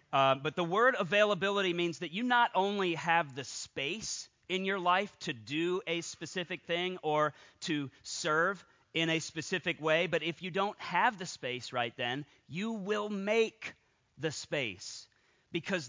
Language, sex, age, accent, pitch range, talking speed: English, male, 40-59, American, 140-185 Hz, 160 wpm